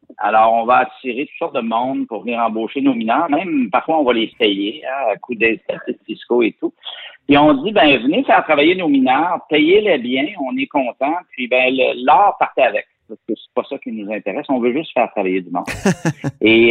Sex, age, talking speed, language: male, 50-69, 225 wpm, French